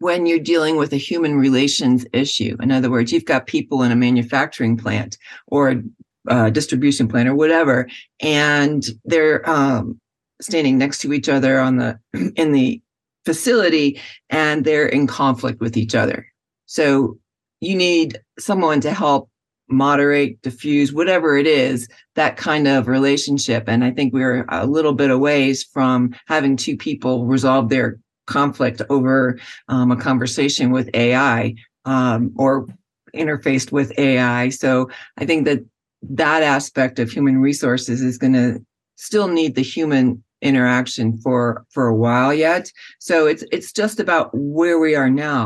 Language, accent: English, American